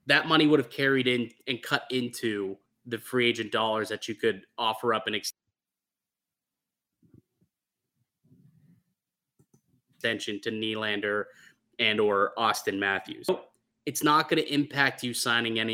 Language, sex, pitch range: English, male, 110-135 Hz